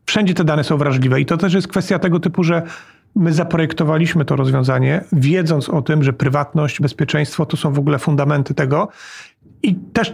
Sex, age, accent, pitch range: male, 40-59, native, 150-180 Hz